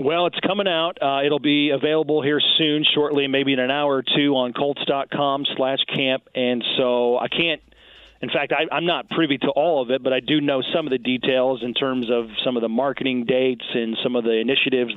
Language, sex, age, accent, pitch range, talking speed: English, male, 40-59, American, 125-145 Hz, 220 wpm